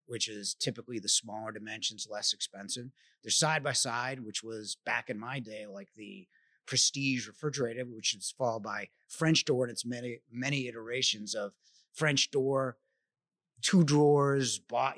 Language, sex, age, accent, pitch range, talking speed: English, male, 30-49, American, 115-135 Hz, 160 wpm